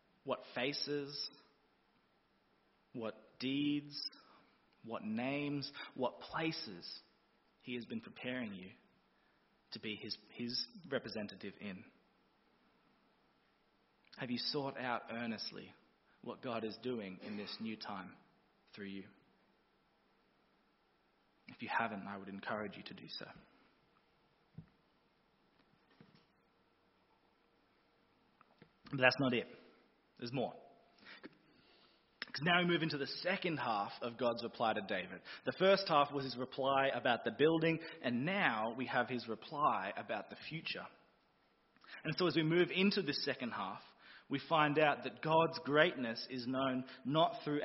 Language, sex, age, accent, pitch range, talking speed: English, male, 20-39, Australian, 120-160 Hz, 125 wpm